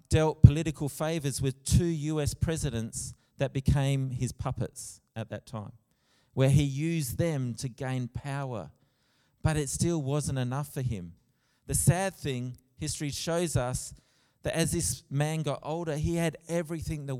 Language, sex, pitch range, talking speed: English, male, 115-140 Hz, 155 wpm